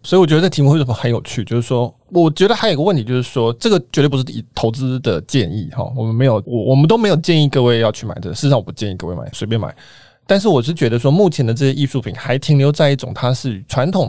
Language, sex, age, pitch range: Chinese, male, 20-39, 120-155 Hz